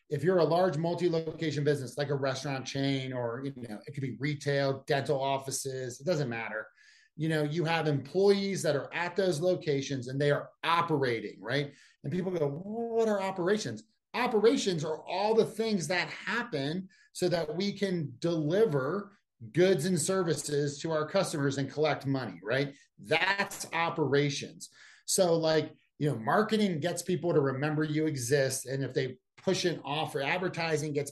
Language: English